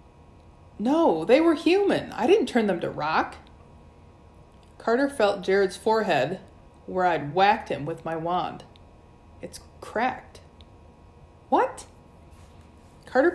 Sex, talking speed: female, 110 wpm